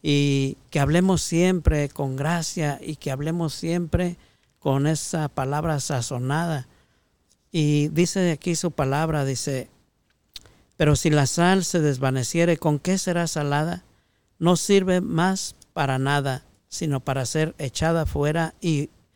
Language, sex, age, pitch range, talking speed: Spanish, male, 50-69, 135-165 Hz, 130 wpm